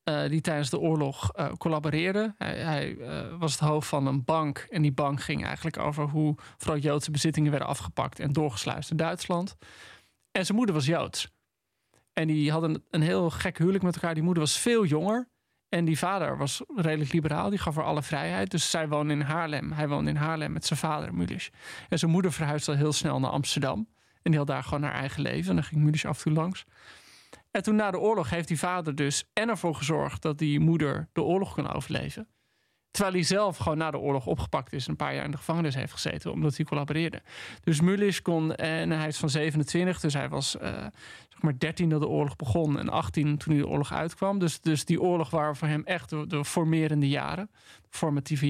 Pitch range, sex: 150-170 Hz, male